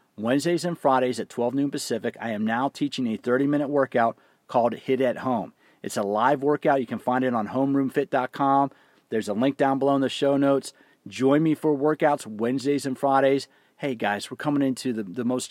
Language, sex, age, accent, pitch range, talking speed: English, male, 40-59, American, 125-145 Hz, 200 wpm